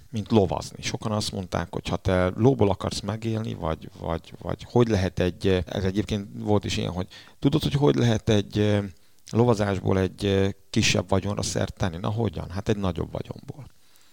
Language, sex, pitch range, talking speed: Hungarian, male, 95-115 Hz, 170 wpm